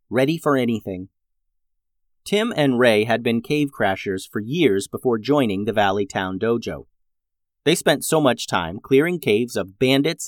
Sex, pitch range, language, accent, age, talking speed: male, 95-135 Hz, English, American, 40-59, 160 wpm